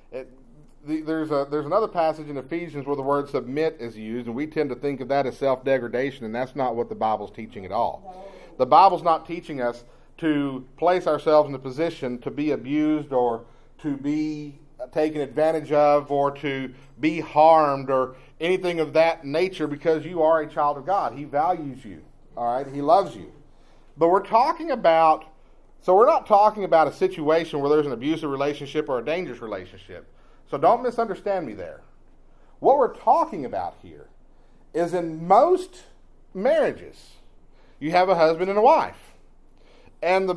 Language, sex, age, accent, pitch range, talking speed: English, male, 40-59, American, 145-210 Hz, 175 wpm